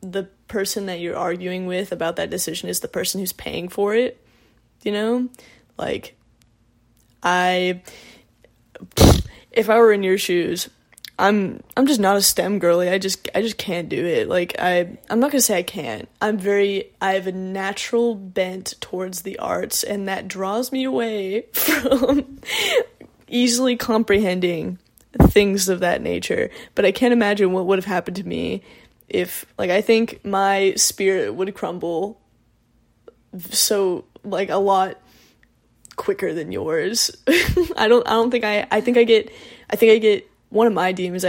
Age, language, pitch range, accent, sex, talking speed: 10-29, English, 185-235 Hz, American, female, 165 wpm